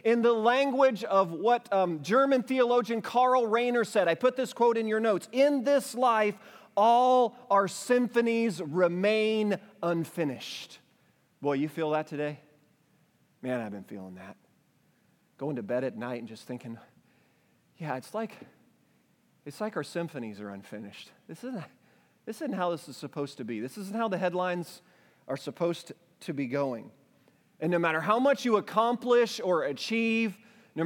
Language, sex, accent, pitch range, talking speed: English, male, American, 175-245 Hz, 160 wpm